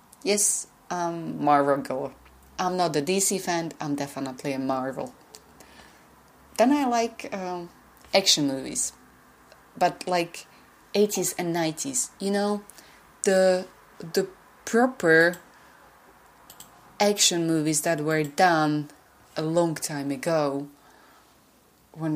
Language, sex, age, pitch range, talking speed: English, female, 30-49, 145-185 Hz, 105 wpm